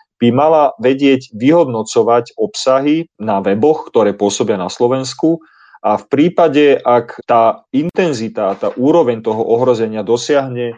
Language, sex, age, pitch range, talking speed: Slovak, male, 40-59, 110-135 Hz, 120 wpm